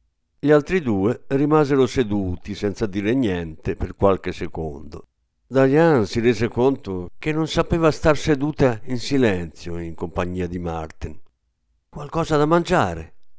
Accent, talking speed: native, 130 wpm